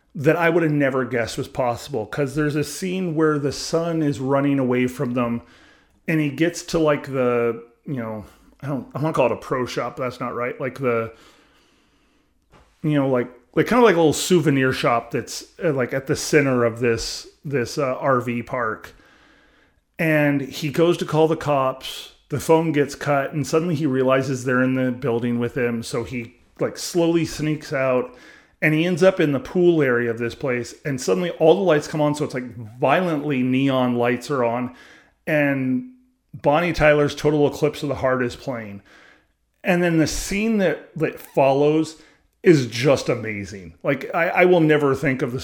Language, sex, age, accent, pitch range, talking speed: English, male, 30-49, American, 125-155 Hz, 195 wpm